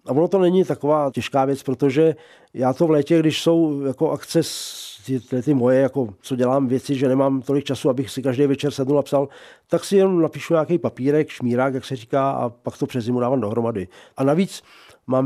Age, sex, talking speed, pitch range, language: 40-59, male, 205 wpm, 135-165 Hz, Czech